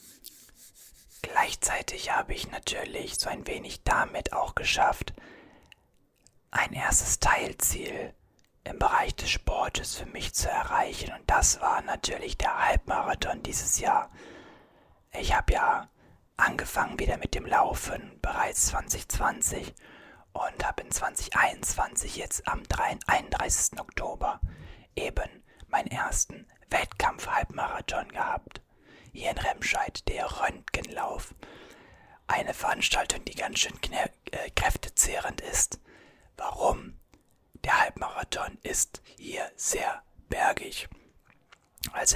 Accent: German